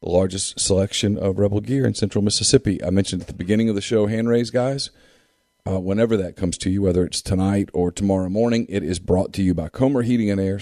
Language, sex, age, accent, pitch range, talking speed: English, male, 40-59, American, 95-115 Hz, 230 wpm